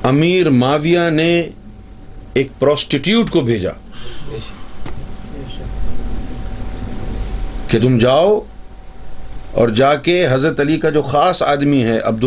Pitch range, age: 105-165 Hz, 50-69